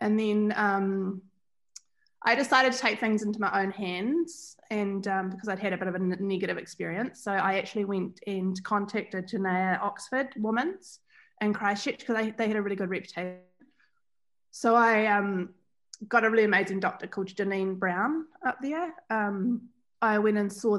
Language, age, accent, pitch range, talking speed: English, 20-39, Australian, 190-225 Hz, 175 wpm